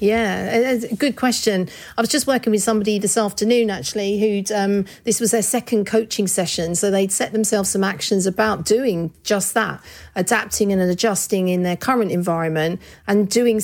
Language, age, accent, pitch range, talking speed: English, 40-59, British, 185-225 Hz, 170 wpm